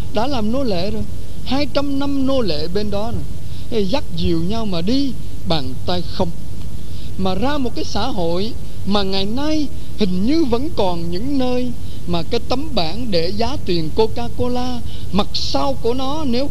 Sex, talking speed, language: male, 180 wpm, Vietnamese